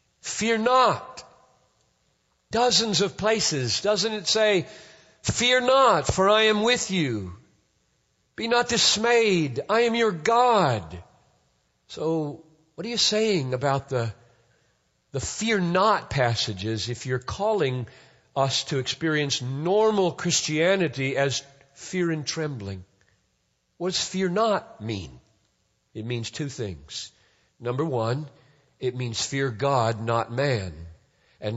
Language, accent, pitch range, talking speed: English, American, 110-180 Hz, 120 wpm